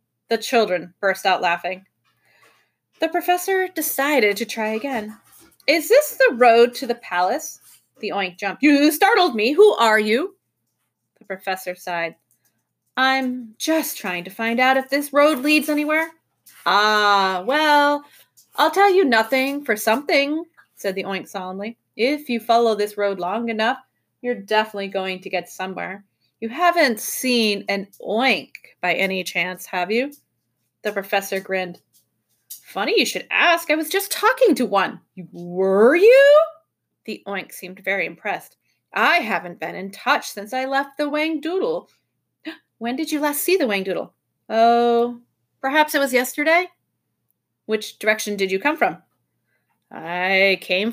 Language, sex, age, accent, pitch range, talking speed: English, female, 30-49, American, 195-290 Hz, 150 wpm